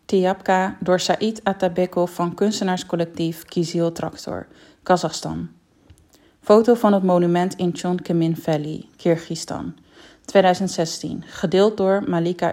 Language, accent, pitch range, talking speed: English, Dutch, 165-195 Hz, 100 wpm